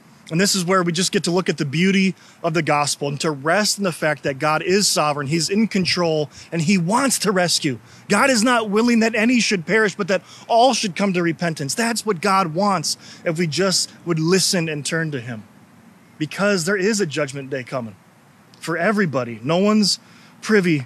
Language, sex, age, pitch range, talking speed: English, male, 20-39, 165-215 Hz, 210 wpm